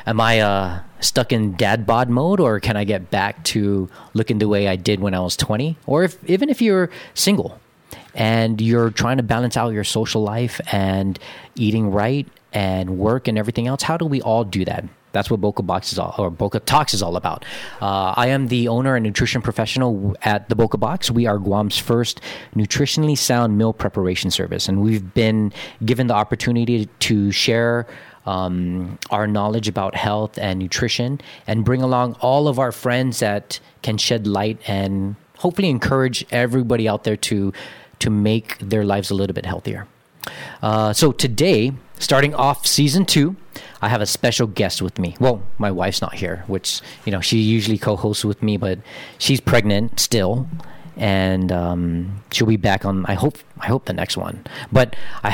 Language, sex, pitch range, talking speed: English, male, 100-125 Hz, 185 wpm